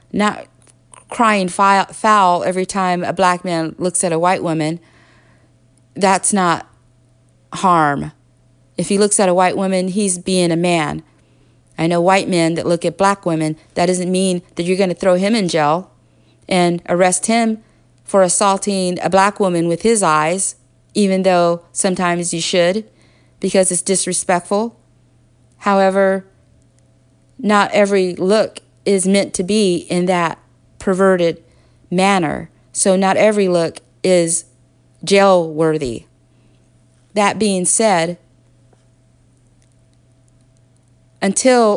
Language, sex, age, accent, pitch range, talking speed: English, female, 40-59, American, 150-195 Hz, 130 wpm